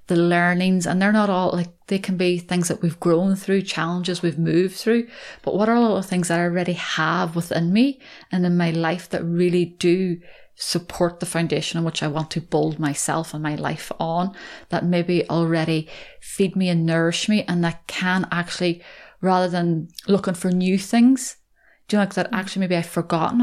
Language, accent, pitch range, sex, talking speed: English, British, 170-195 Hz, female, 200 wpm